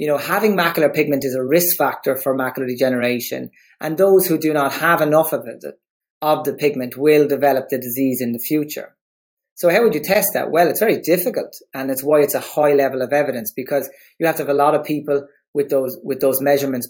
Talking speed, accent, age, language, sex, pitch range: 220 wpm, Irish, 30-49, English, male, 130-145 Hz